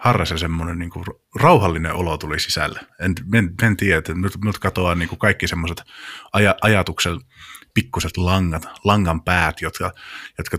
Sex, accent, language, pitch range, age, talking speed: male, native, Finnish, 85-100 Hz, 30-49, 135 wpm